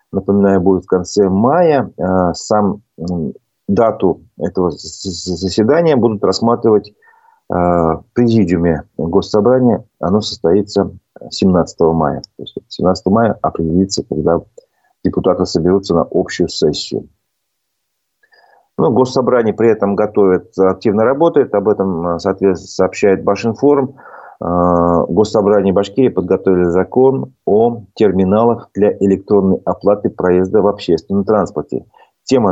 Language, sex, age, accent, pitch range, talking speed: Russian, male, 30-49, native, 90-110 Hz, 100 wpm